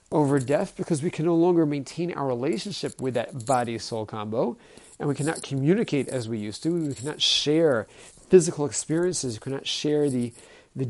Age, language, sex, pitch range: 40-59, English, male, 130-175 Hz